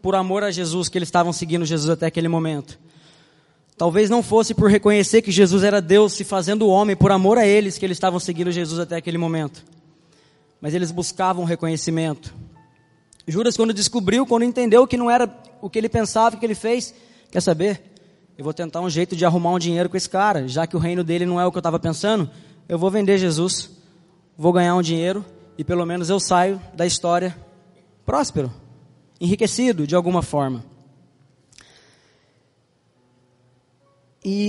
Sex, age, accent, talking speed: male, 20-39, Brazilian, 175 wpm